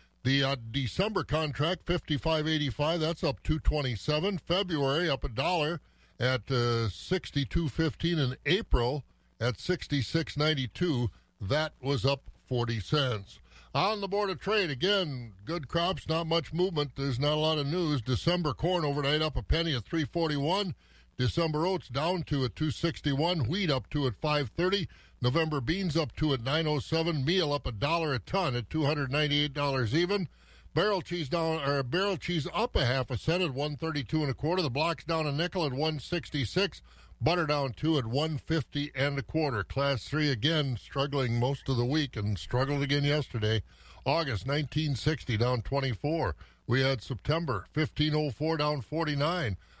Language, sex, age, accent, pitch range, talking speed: English, male, 60-79, American, 130-165 Hz, 175 wpm